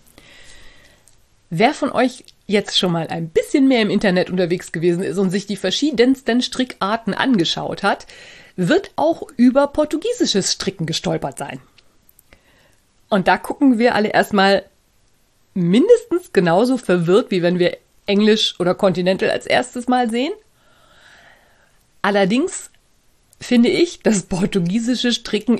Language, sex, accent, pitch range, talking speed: German, female, German, 190-250 Hz, 125 wpm